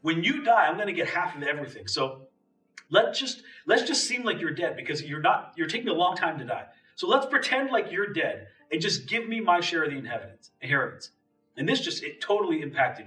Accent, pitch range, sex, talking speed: American, 160-255 Hz, male, 235 wpm